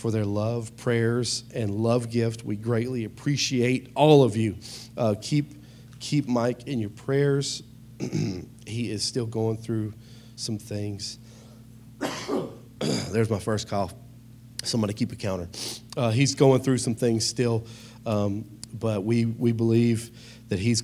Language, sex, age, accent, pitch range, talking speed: English, male, 40-59, American, 110-125 Hz, 140 wpm